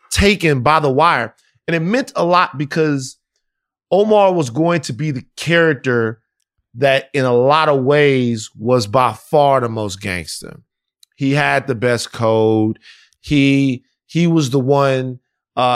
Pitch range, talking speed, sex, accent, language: 120-150 Hz, 150 wpm, male, American, English